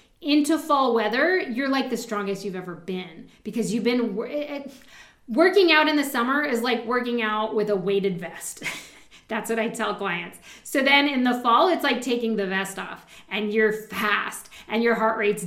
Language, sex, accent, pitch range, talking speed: English, female, American, 215-275 Hz, 195 wpm